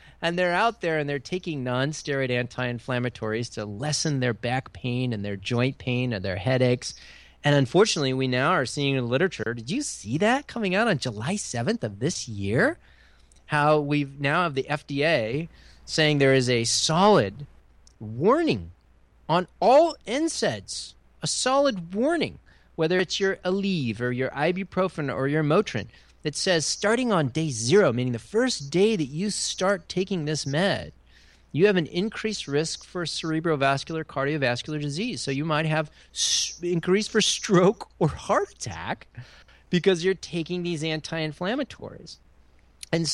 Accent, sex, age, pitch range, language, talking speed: American, male, 30-49, 125-185 Hz, English, 155 wpm